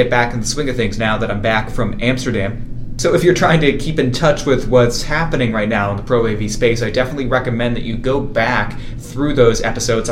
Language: English